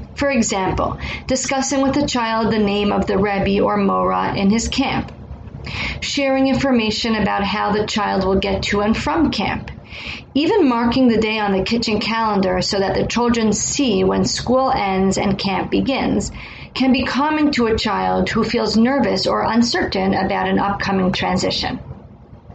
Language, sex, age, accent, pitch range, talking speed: English, female, 40-59, American, 200-255 Hz, 165 wpm